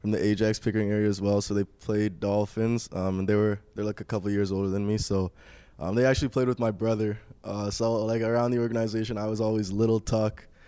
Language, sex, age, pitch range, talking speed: English, male, 20-39, 95-110 Hz, 240 wpm